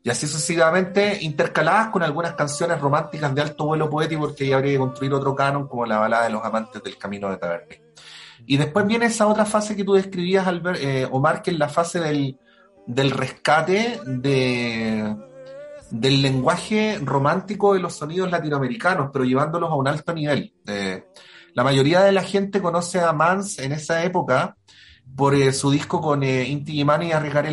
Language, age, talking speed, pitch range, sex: Spanish, 30-49, 185 wpm, 130-175 Hz, male